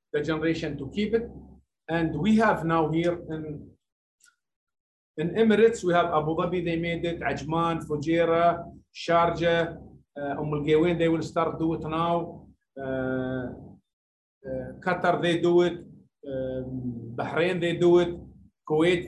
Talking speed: 135 wpm